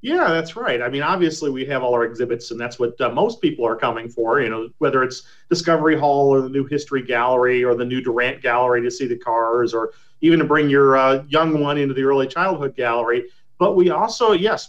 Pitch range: 135-180 Hz